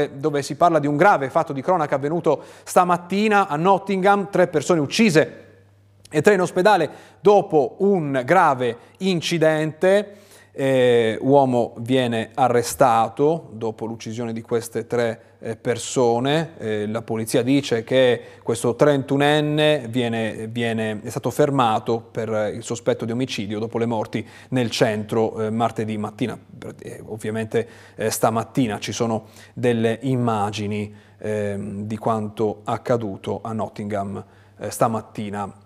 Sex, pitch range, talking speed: male, 110-145 Hz, 125 wpm